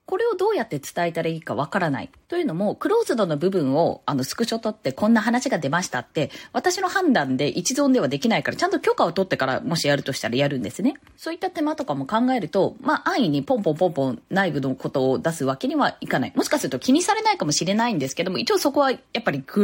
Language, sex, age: Japanese, female, 20-39